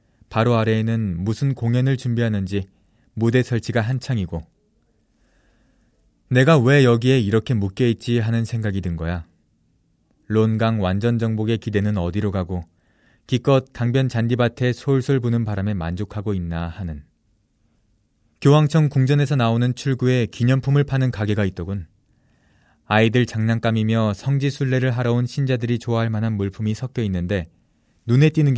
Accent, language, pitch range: native, Korean, 105-130 Hz